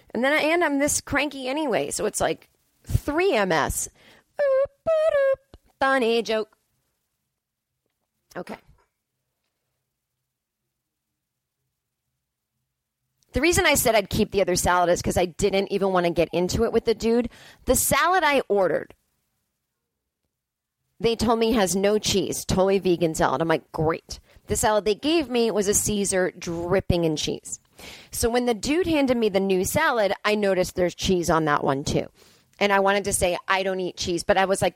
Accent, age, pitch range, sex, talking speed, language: American, 30-49, 170-230 Hz, female, 165 wpm, English